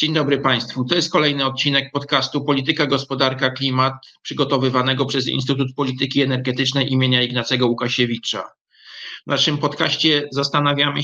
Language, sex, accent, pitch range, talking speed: Polish, male, native, 125-140 Hz, 125 wpm